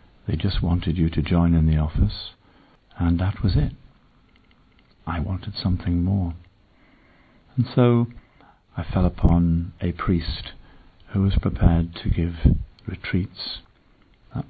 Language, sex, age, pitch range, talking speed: English, male, 50-69, 85-105 Hz, 130 wpm